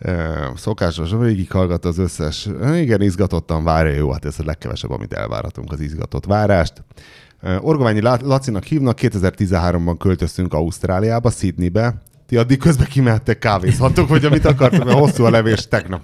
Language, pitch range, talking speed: Hungarian, 85-115 Hz, 155 wpm